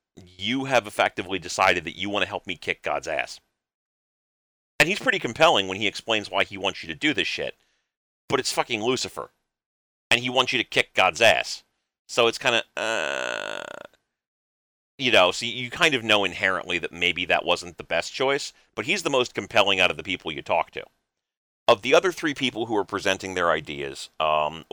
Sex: male